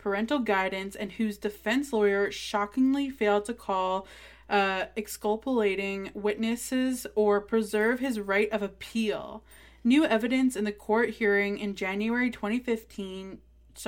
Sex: female